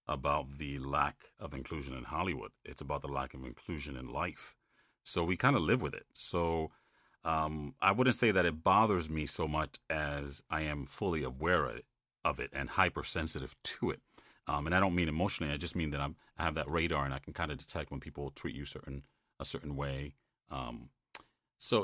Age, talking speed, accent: 40-59, 200 wpm, American